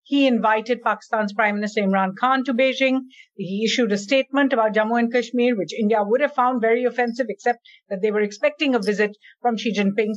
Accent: Indian